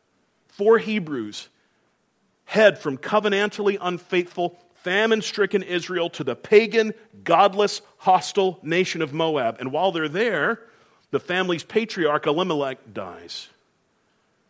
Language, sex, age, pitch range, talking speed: English, male, 40-59, 130-190 Hz, 105 wpm